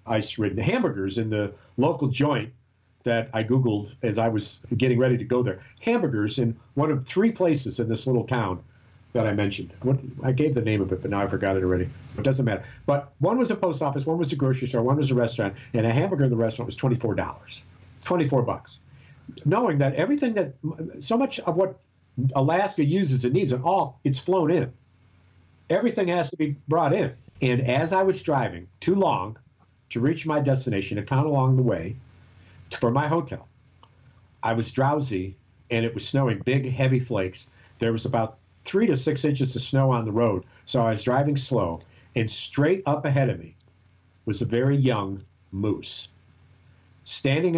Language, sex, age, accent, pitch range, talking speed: English, male, 50-69, American, 105-135 Hz, 190 wpm